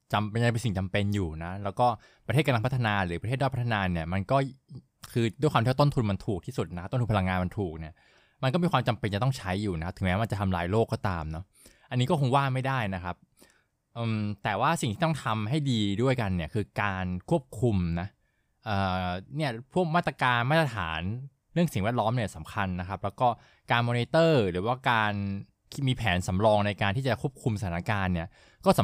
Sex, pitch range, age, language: male, 100-130 Hz, 20-39, Thai